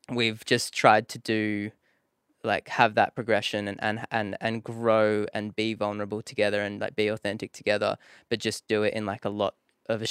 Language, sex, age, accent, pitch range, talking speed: English, male, 10-29, Australian, 100-110 Hz, 195 wpm